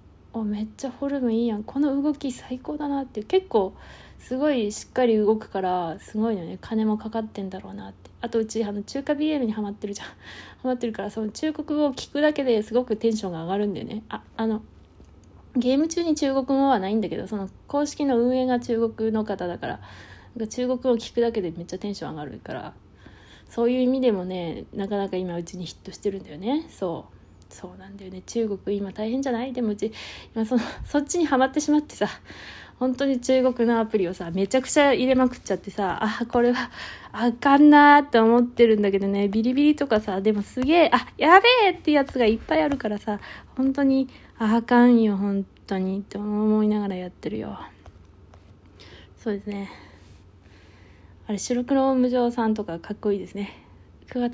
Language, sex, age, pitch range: Japanese, female, 20-39, 200-260 Hz